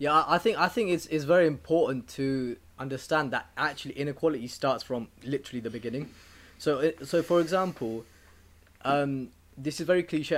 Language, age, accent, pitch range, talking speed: English, 20-39, British, 125-165 Hz, 170 wpm